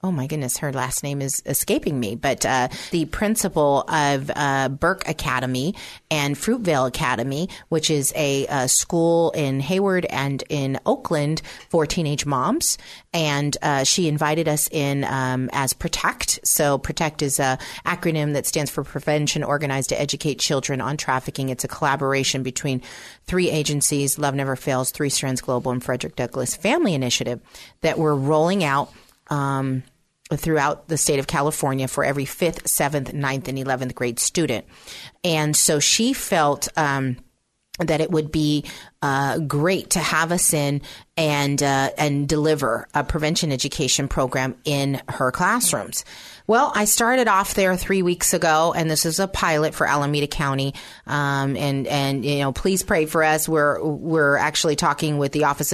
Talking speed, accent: 165 wpm, American